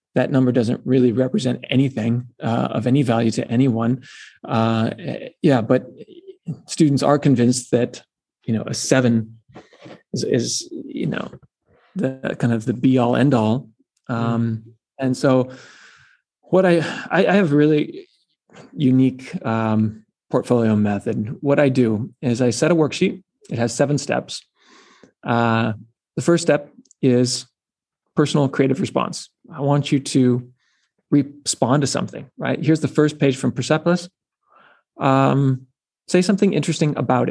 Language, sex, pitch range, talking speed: English, male, 120-145 Hz, 140 wpm